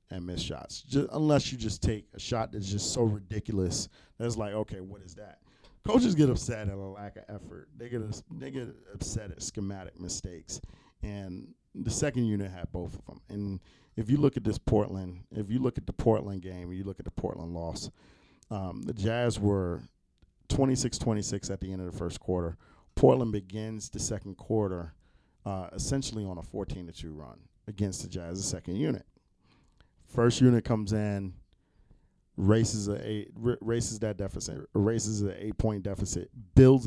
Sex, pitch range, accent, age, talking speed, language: male, 95-115 Hz, American, 40-59, 180 wpm, English